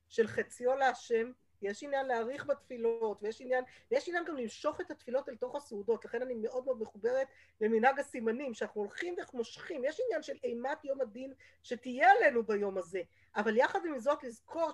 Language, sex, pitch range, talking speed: Hebrew, female, 230-300 Hz, 175 wpm